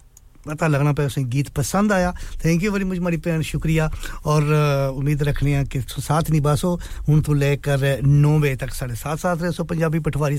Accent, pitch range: Indian, 140-160 Hz